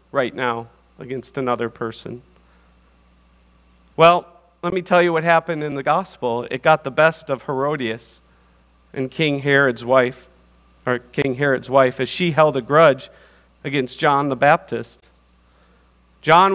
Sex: male